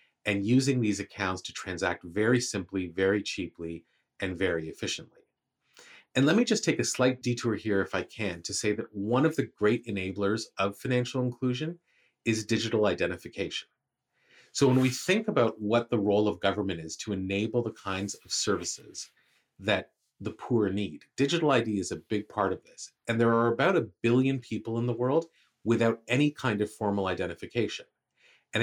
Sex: male